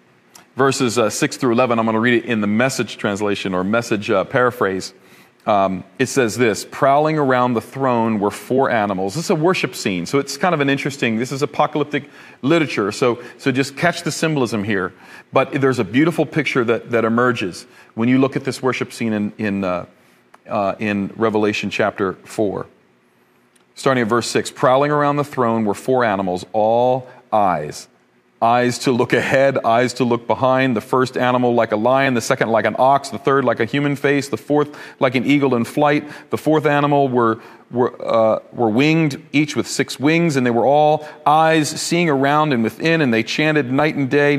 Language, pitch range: English, 115-150 Hz